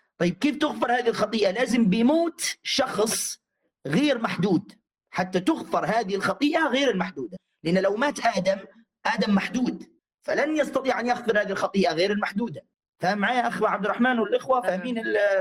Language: Arabic